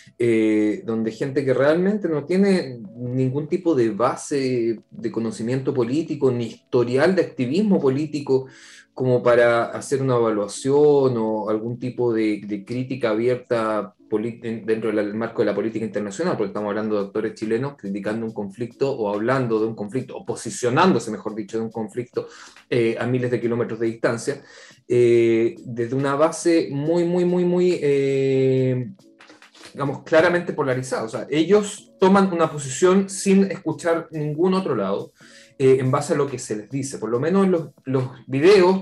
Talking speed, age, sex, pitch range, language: 165 wpm, 20-39, male, 120-160 Hz, Spanish